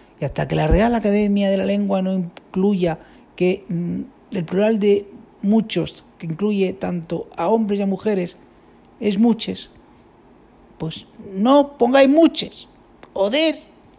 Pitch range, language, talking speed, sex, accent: 225-285 Hz, Spanish, 135 wpm, male, Spanish